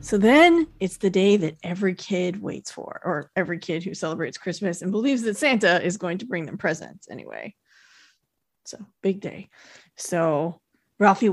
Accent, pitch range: American, 185-255 Hz